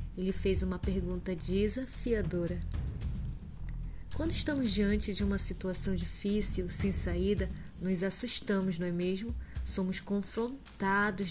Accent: Brazilian